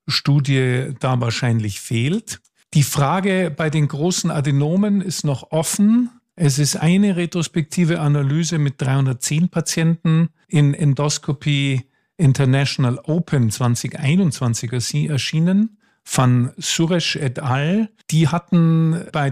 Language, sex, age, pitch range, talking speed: German, male, 50-69, 130-160 Hz, 105 wpm